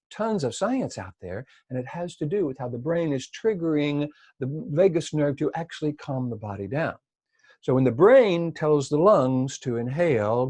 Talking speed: 195 wpm